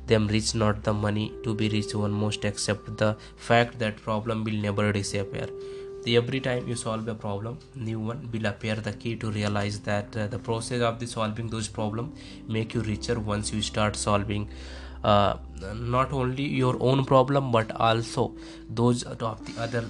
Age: 20-39